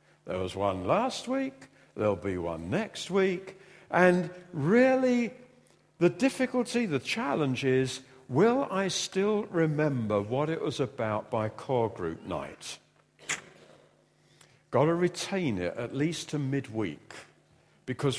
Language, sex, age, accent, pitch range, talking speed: English, male, 50-69, British, 110-180 Hz, 125 wpm